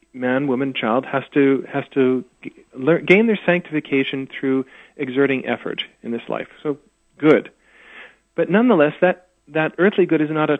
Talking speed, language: 165 wpm, English